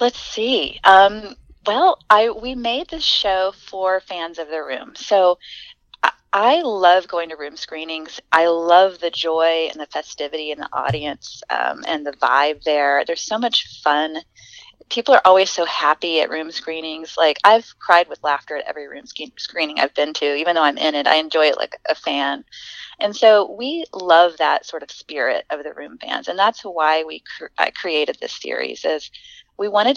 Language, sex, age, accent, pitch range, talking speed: English, female, 30-49, American, 160-205 Hz, 195 wpm